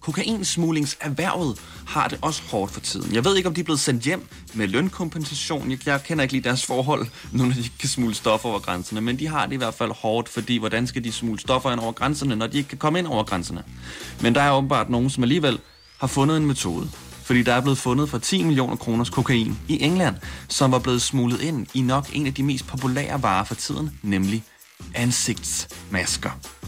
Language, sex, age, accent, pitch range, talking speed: Danish, male, 30-49, native, 110-145 Hz, 215 wpm